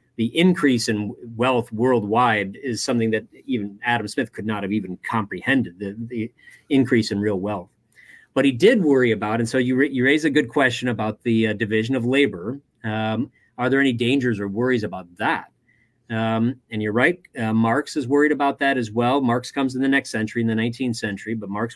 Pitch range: 110-135 Hz